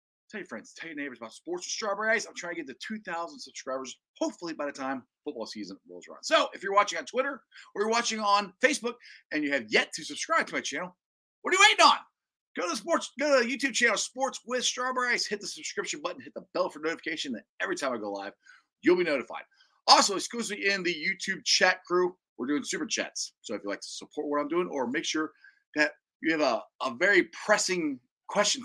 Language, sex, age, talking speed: English, male, 40-59, 230 wpm